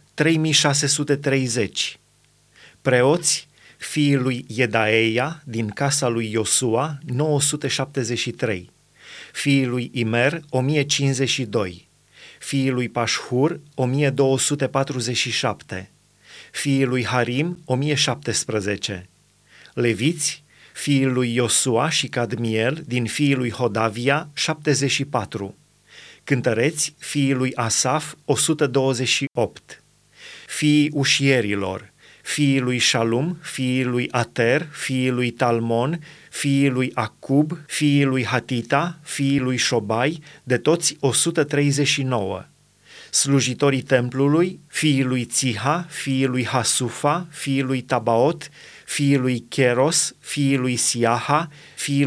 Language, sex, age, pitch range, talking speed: Romanian, male, 30-49, 125-145 Hz, 90 wpm